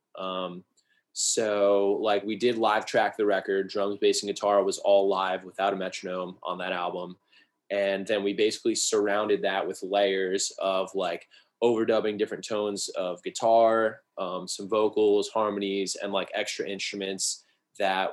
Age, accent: 20-39, American